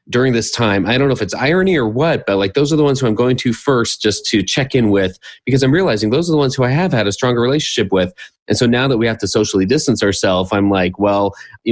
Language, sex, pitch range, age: English, male, 100-125 Hz, 30-49